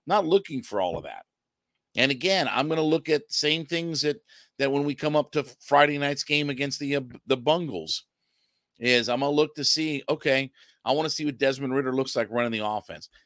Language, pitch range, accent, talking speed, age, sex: English, 110-140 Hz, American, 230 wpm, 50-69, male